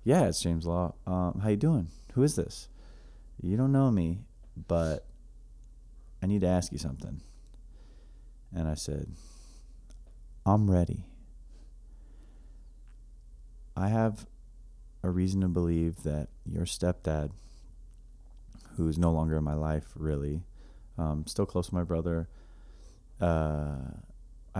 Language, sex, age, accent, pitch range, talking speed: English, male, 30-49, American, 75-90 Hz, 125 wpm